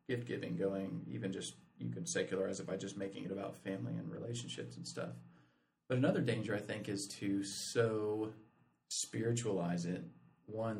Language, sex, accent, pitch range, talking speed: English, male, American, 95-110 Hz, 165 wpm